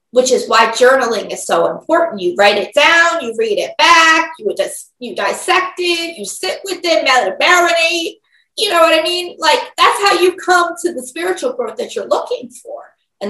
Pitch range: 240-355 Hz